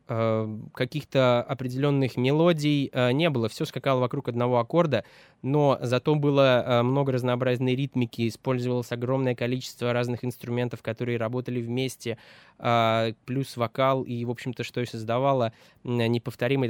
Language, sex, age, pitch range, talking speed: Russian, male, 20-39, 120-145 Hz, 120 wpm